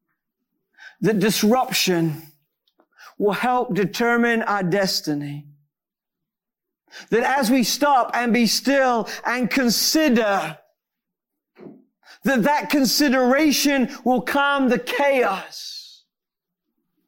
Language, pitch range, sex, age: English, 180-250 Hz, male, 50-69